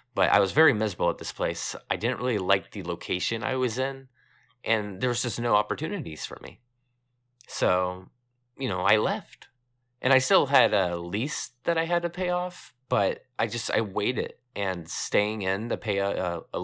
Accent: American